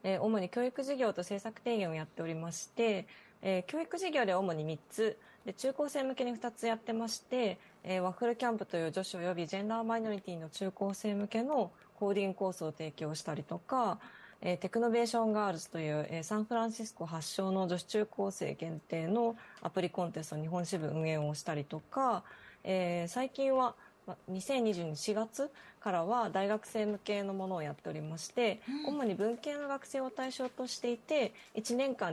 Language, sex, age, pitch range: Japanese, female, 20-39, 170-230 Hz